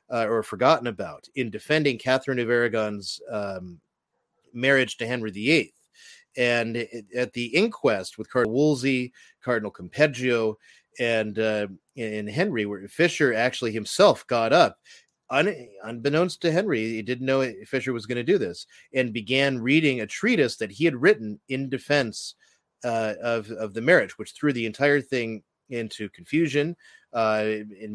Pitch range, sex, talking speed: 110-135 Hz, male, 155 wpm